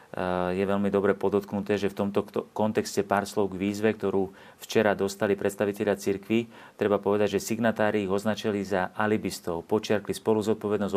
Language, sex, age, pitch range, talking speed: Slovak, male, 40-59, 95-105 Hz, 150 wpm